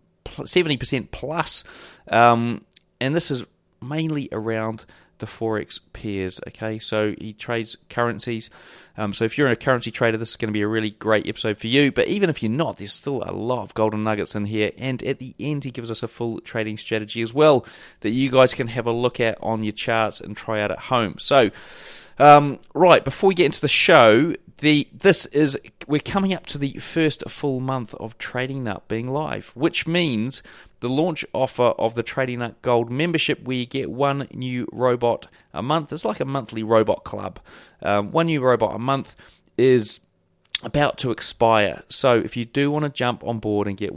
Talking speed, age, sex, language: 200 wpm, 30-49, male, English